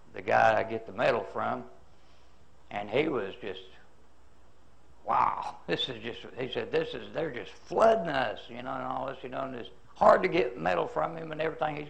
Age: 60-79